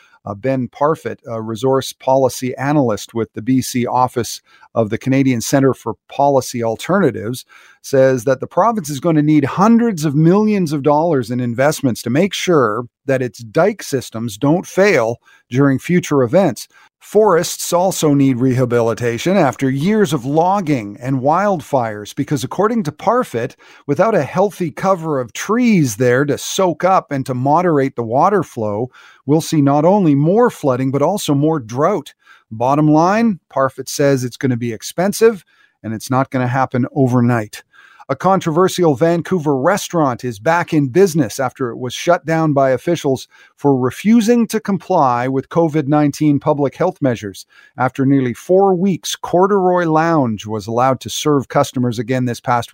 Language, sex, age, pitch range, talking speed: English, male, 40-59, 125-175 Hz, 160 wpm